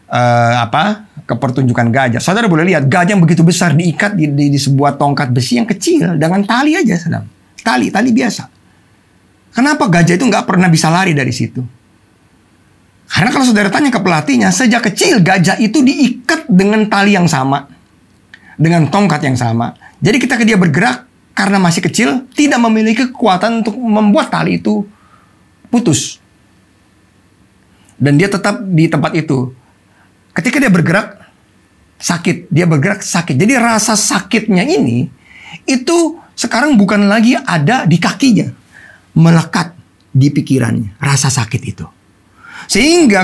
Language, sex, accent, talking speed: Indonesian, male, native, 140 wpm